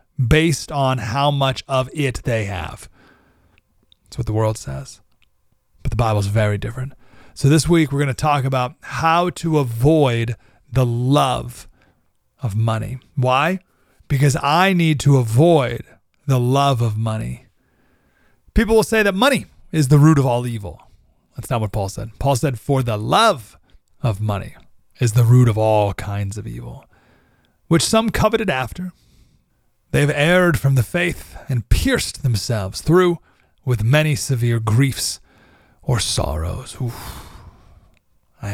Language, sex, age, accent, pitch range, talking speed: English, male, 40-59, American, 110-160 Hz, 150 wpm